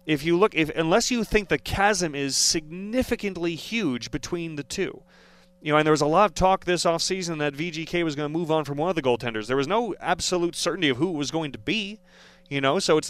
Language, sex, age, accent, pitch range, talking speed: English, male, 30-49, American, 135-180 Hz, 250 wpm